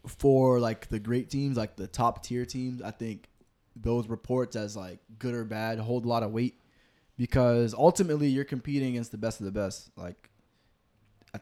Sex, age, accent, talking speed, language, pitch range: male, 20-39, American, 185 wpm, English, 105-125 Hz